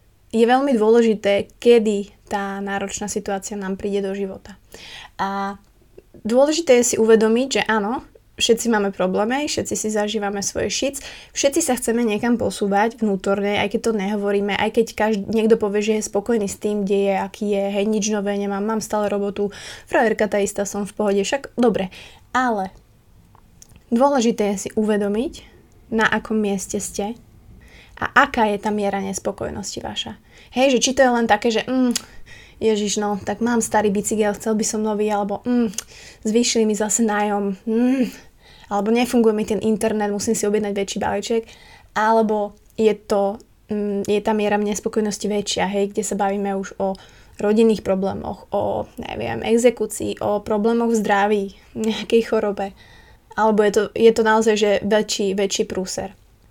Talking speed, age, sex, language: 160 wpm, 20-39, female, Slovak